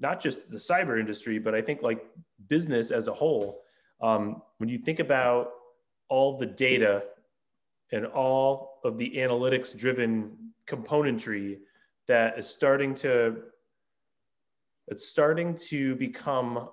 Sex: male